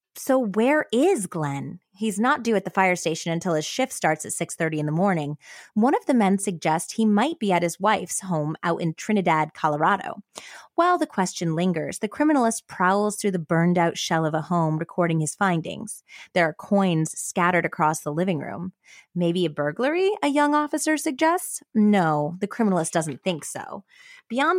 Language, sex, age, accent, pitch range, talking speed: English, female, 20-39, American, 165-220 Hz, 185 wpm